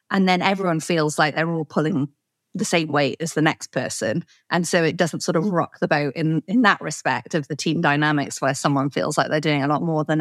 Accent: British